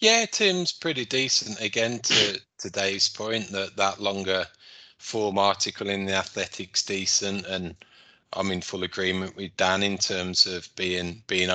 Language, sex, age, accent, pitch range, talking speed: English, male, 30-49, British, 95-115 Hz, 150 wpm